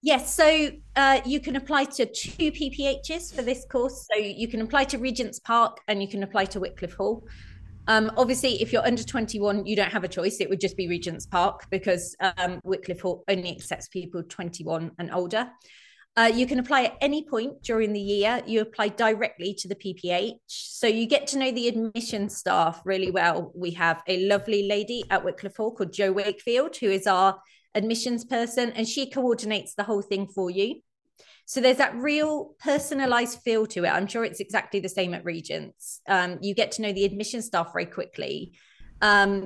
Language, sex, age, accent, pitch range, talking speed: English, female, 20-39, British, 190-245 Hz, 200 wpm